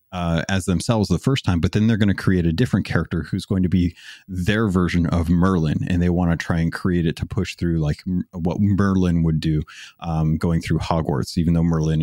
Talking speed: 230 wpm